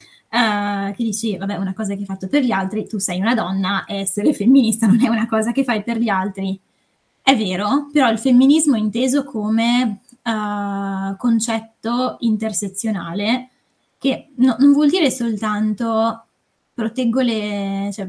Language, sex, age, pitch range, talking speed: Italian, female, 10-29, 205-245 Hz, 140 wpm